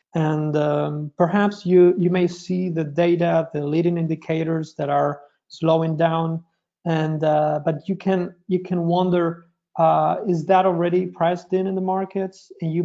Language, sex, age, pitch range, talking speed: English, male, 30-49, 155-185 Hz, 165 wpm